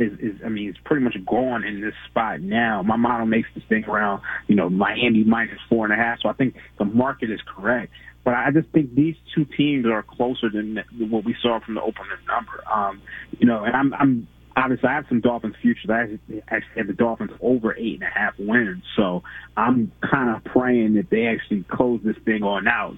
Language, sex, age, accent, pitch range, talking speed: English, male, 30-49, American, 105-130 Hz, 225 wpm